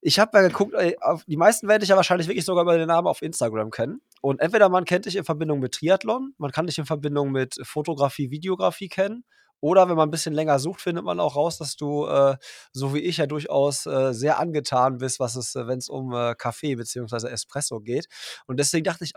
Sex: male